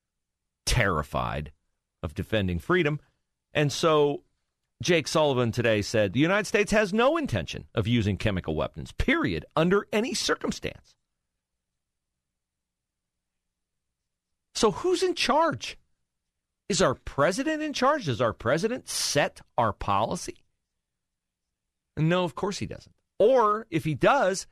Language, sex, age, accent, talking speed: English, male, 40-59, American, 115 wpm